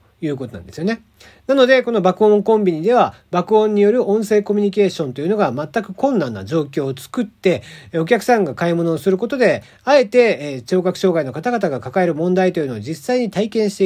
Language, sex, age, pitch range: Japanese, male, 40-59, 155-220 Hz